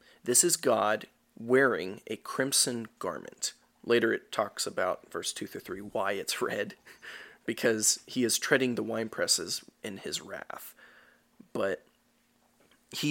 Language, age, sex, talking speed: English, 30-49, male, 135 wpm